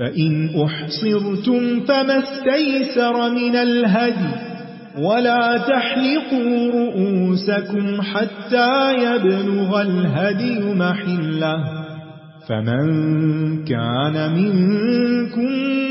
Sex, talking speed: male, 60 wpm